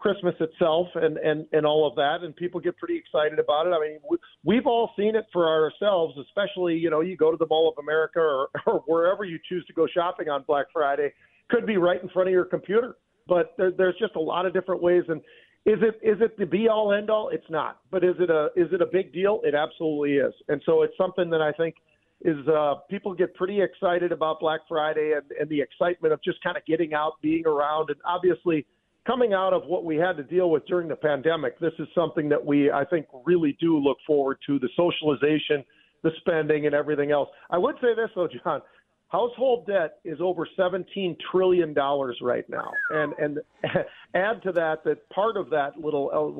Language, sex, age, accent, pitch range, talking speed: English, male, 40-59, American, 155-185 Hz, 220 wpm